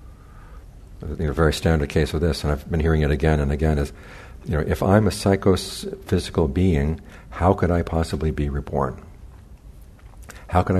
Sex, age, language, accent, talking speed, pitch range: male, 60-79, English, American, 170 wpm, 75-95 Hz